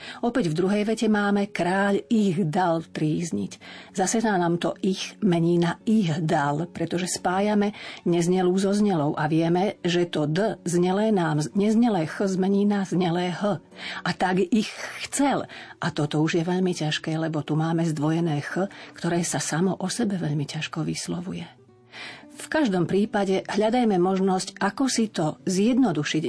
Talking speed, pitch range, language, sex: 155 wpm, 155-200 Hz, Slovak, female